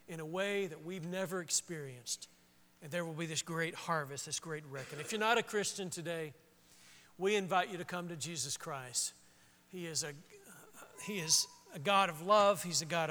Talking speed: 200 wpm